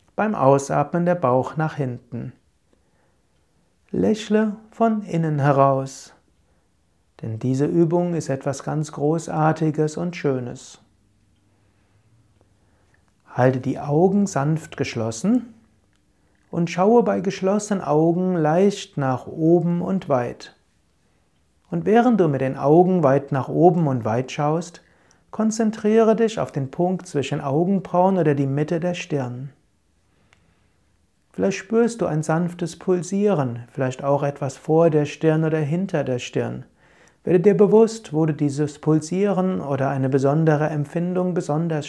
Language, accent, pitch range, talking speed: German, German, 120-175 Hz, 125 wpm